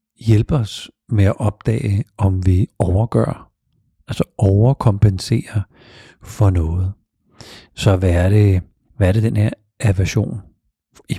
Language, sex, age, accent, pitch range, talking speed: Danish, male, 50-69, native, 95-110 Hz, 125 wpm